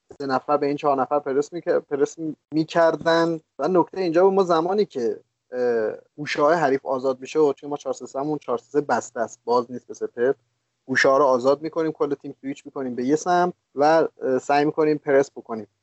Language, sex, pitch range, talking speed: Persian, male, 135-165 Hz, 195 wpm